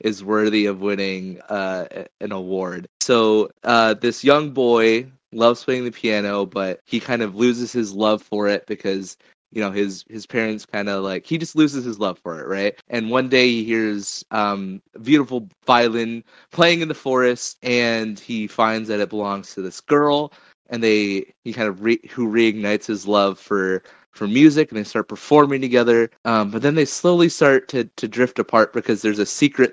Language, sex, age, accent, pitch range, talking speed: English, male, 20-39, American, 105-120 Hz, 190 wpm